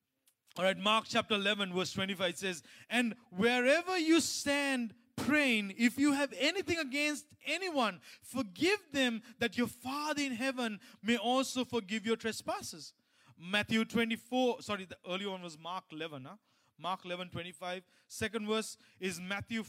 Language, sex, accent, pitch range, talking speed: English, male, Indian, 200-285 Hz, 145 wpm